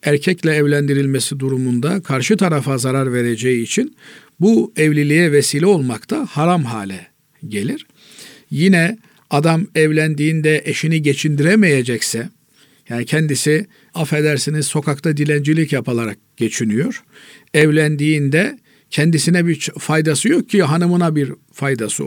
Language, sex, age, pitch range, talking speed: Turkish, male, 50-69, 135-170 Hz, 100 wpm